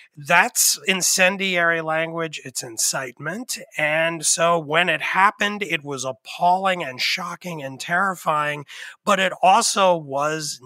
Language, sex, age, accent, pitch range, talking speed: English, male, 30-49, American, 135-175 Hz, 120 wpm